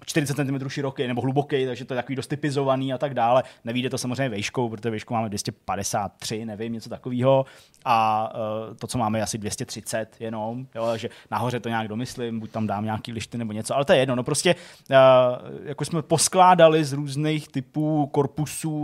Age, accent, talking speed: 20-39, native, 190 wpm